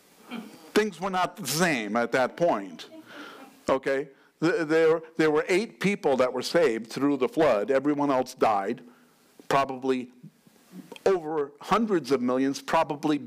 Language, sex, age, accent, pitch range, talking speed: English, male, 60-79, American, 125-200 Hz, 130 wpm